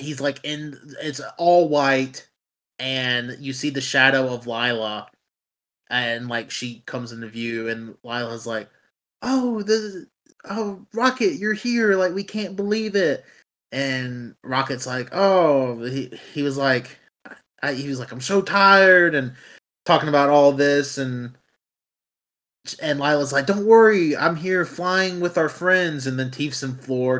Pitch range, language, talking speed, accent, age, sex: 125-150 Hz, English, 155 wpm, American, 20-39, male